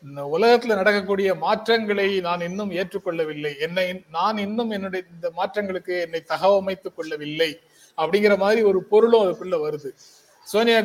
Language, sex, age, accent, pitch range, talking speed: Tamil, male, 30-49, native, 170-215 Hz, 125 wpm